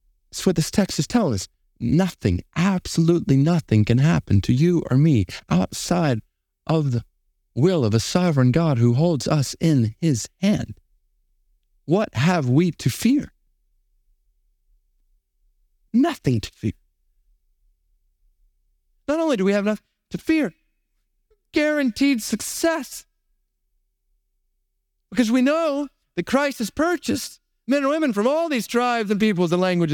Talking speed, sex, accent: 130 wpm, male, American